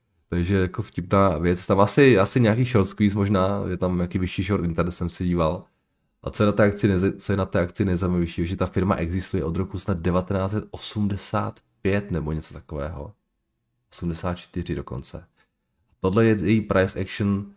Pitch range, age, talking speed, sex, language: 85-105 Hz, 30-49, 155 wpm, male, Czech